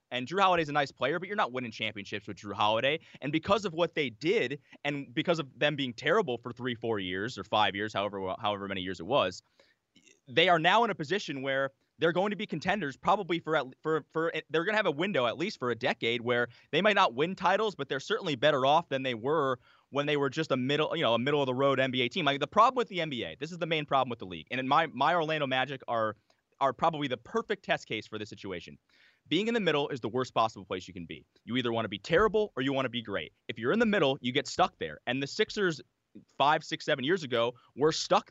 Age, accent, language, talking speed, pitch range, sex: 20-39, American, English, 265 wpm, 120-160 Hz, male